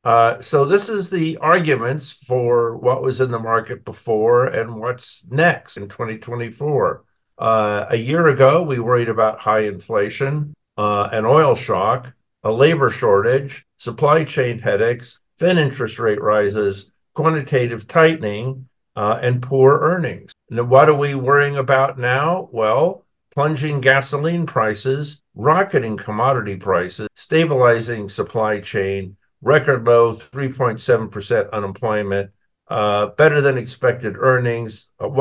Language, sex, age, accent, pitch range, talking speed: English, male, 50-69, American, 110-140 Hz, 130 wpm